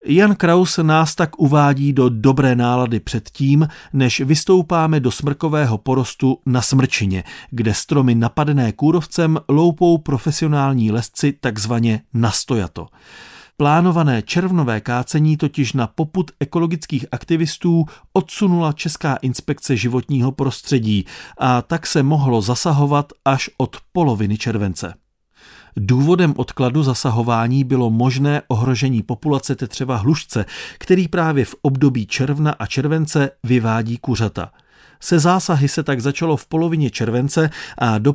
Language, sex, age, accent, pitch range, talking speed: Czech, male, 40-59, native, 120-155 Hz, 120 wpm